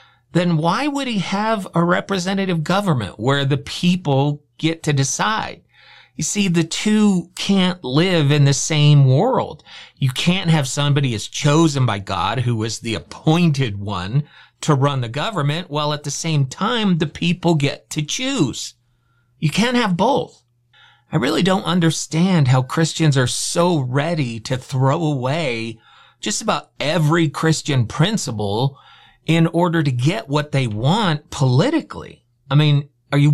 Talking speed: 150 wpm